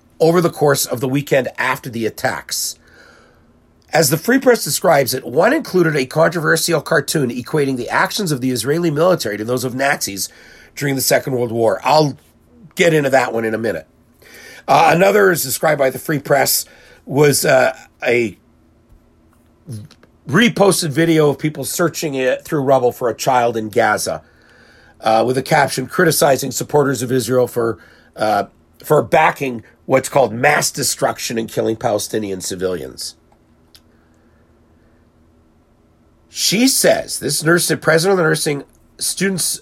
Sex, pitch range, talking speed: male, 95-160 Hz, 150 wpm